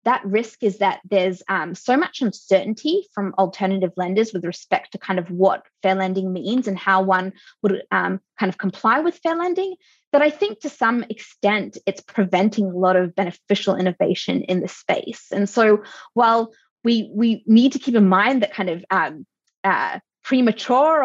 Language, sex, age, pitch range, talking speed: English, female, 20-39, 190-245 Hz, 180 wpm